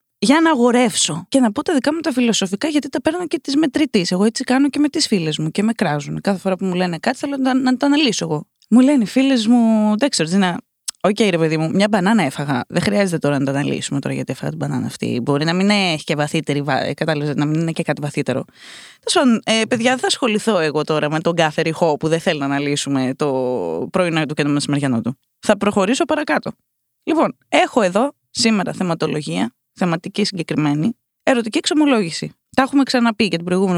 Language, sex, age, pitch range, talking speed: Greek, female, 20-39, 170-280 Hz, 170 wpm